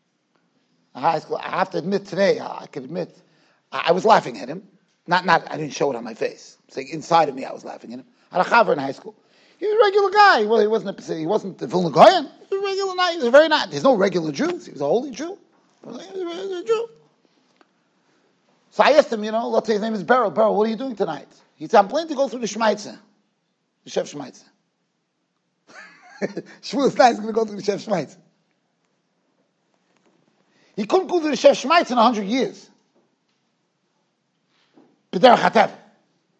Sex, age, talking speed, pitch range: male, 30-49, 210 wpm, 210-330 Hz